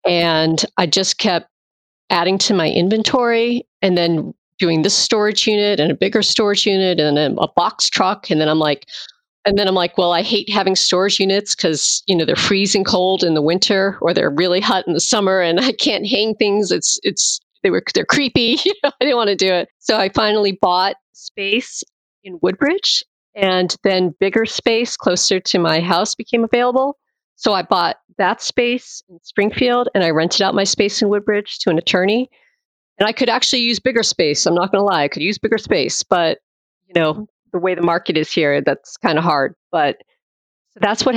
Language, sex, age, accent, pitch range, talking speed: English, female, 40-59, American, 170-215 Hz, 205 wpm